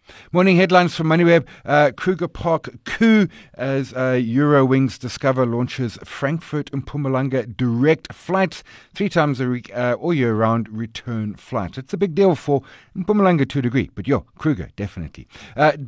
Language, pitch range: English, 120-170 Hz